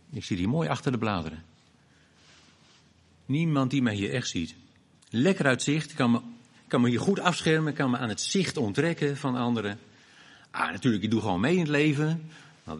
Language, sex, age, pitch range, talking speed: Dutch, male, 50-69, 105-145 Hz, 195 wpm